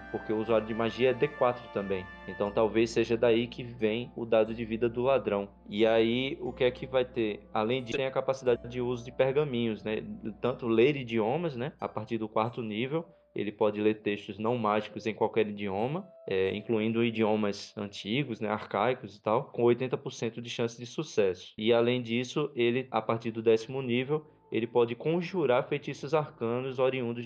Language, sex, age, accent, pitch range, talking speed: Portuguese, male, 20-39, Brazilian, 110-125 Hz, 190 wpm